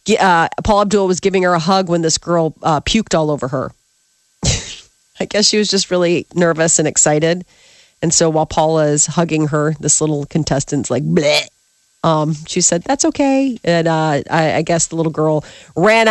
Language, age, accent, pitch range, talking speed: English, 40-59, American, 155-200 Hz, 190 wpm